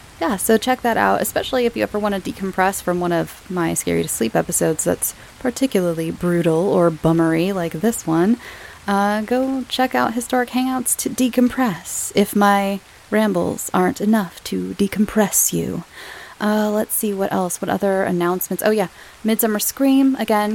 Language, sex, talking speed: English, female, 165 wpm